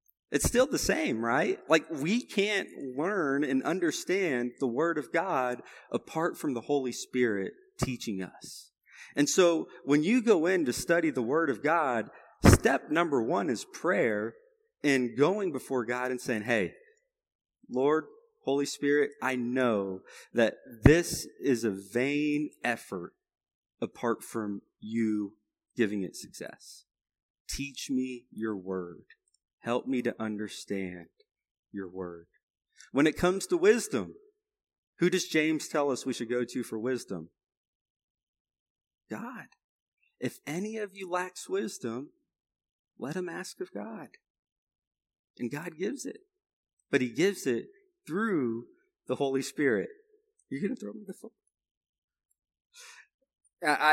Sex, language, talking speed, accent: male, English, 135 wpm, American